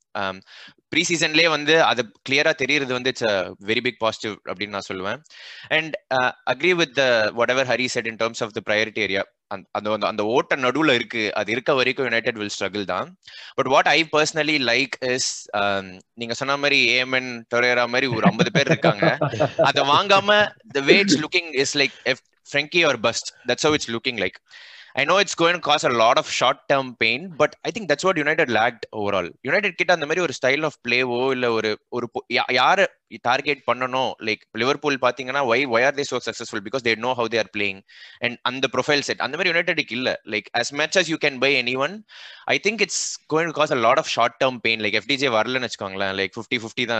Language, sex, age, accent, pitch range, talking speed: Tamil, male, 20-39, native, 115-150 Hz, 205 wpm